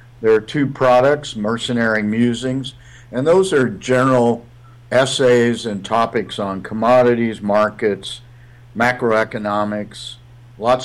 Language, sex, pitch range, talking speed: English, male, 105-120 Hz, 100 wpm